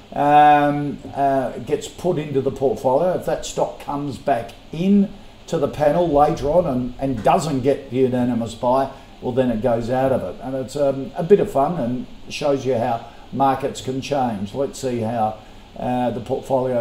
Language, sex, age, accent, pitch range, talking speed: English, male, 50-69, Australian, 115-140 Hz, 185 wpm